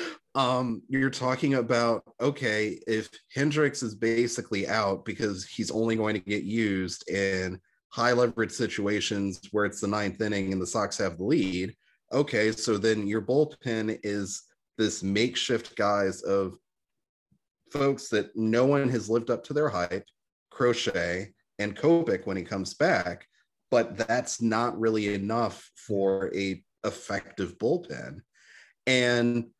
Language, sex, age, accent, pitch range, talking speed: English, male, 30-49, American, 100-125 Hz, 140 wpm